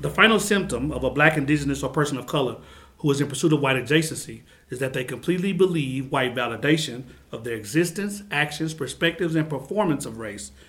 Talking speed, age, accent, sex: 190 wpm, 40-59, American, male